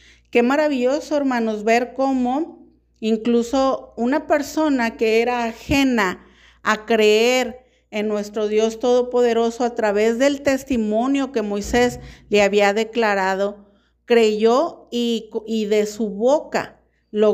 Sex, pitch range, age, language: female, 215-255 Hz, 50-69, Spanish